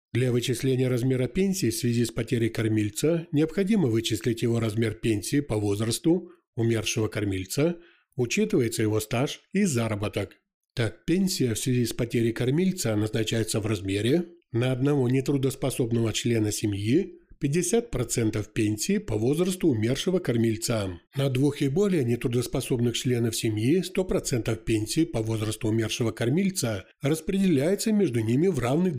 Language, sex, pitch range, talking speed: Ukrainian, male, 115-155 Hz, 130 wpm